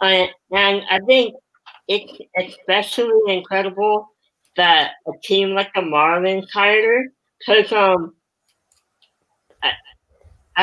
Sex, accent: female, American